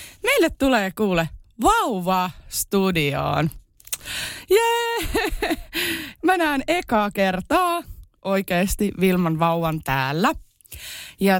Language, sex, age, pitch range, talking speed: Finnish, female, 20-39, 175-265 Hz, 75 wpm